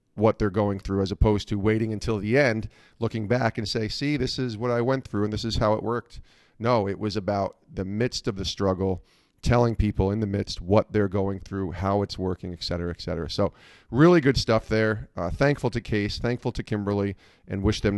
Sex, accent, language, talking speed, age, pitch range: male, American, English, 225 wpm, 40-59, 100-120 Hz